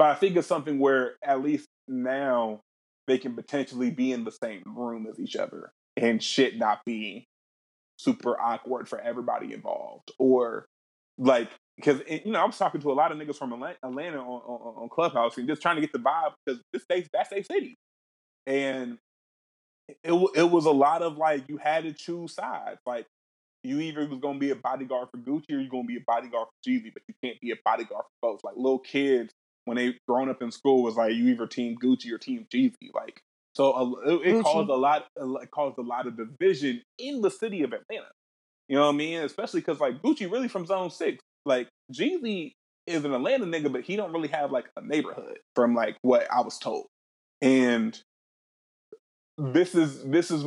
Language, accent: English, American